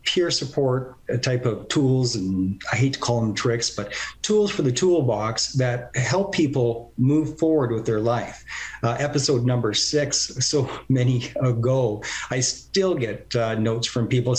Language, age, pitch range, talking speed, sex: English, 50-69, 115-135 Hz, 165 wpm, male